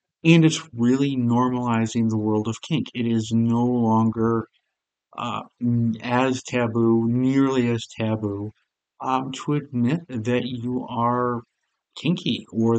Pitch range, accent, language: 115-135 Hz, American, English